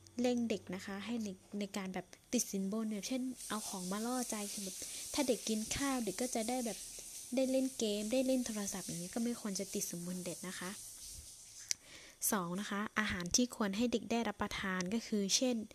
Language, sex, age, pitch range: Thai, female, 20-39, 190-235 Hz